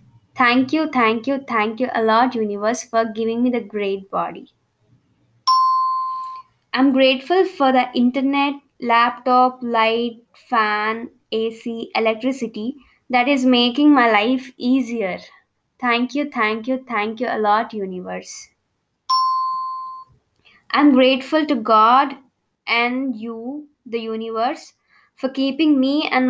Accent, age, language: Indian, 20-39, English